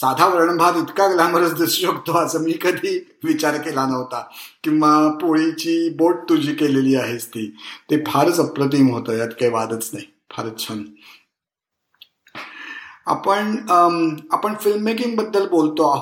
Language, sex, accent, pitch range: Marathi, male, native, 135-165 Hz